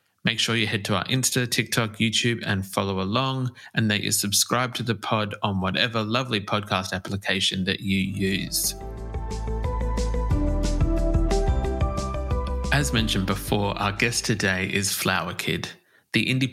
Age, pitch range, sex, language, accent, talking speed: 20-39, 100-115 Hz, male, English, Australian, 140 wpm